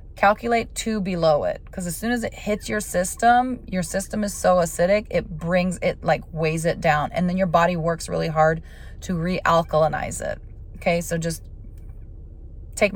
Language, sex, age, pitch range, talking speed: English, female, 20-39, 160-190 Hz, 175 wpm